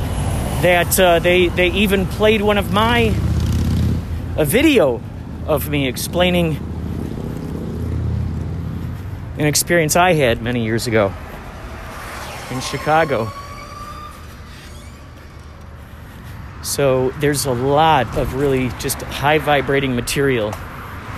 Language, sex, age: English, male, 40-59